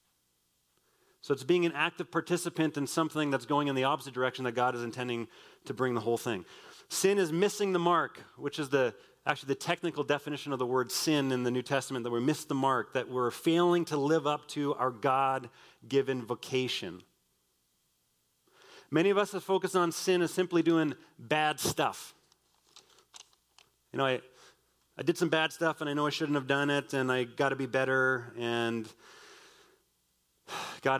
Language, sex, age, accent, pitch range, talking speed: English, male, 30-49, American, 120-155 Hz, 180 wpm